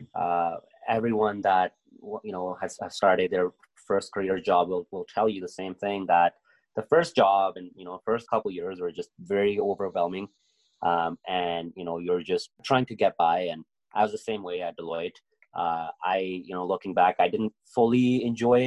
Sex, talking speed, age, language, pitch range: male, 195 wpm, 20-39, English, 95-130 Hz